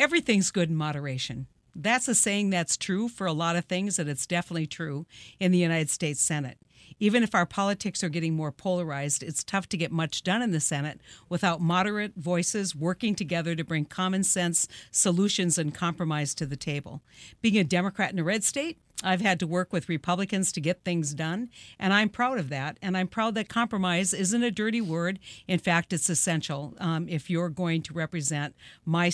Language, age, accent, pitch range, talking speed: English, 50-69, American, 155-190 Hz, 200 wpm